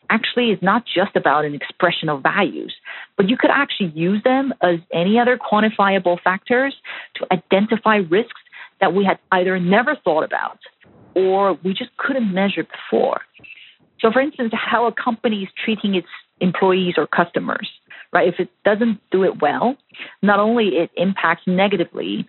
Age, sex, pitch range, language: 40-59, female, 165-220 Hz, English